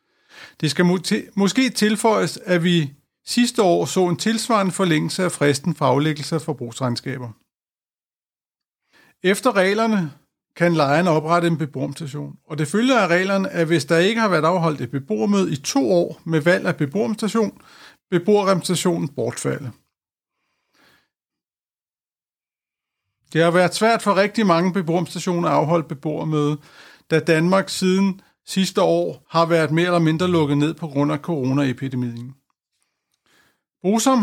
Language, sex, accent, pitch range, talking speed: Danish, male, native, 155-190 Hz, 135 wpm